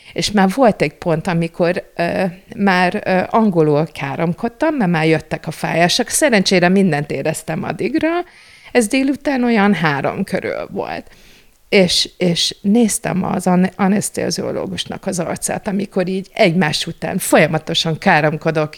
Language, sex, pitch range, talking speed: Hungarian, female, 165-220 Hz, 130 wpm